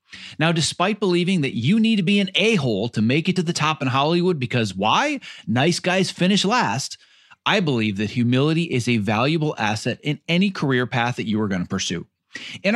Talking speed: 200 wpm